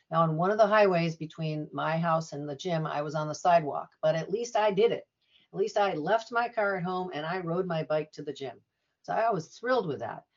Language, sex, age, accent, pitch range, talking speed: English, female, 50-69, American, 160-220 Hz, 260 wpm